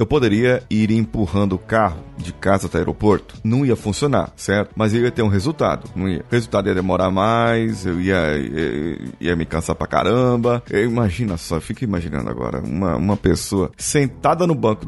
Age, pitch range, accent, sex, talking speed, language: 20-39, 100-145 Hz, Brazilian, male, 195 wpm, Portuguese